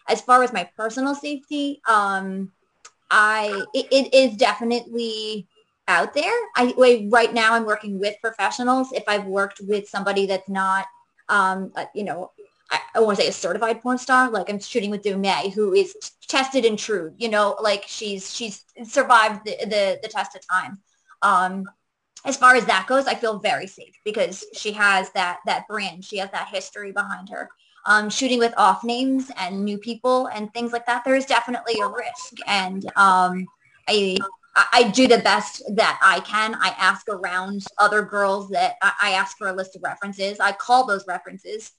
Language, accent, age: English, American, 20-39